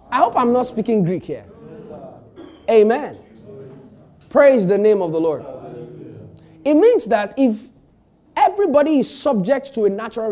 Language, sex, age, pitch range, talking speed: English, male, 30-49, 170-250 Hz, 140 wpm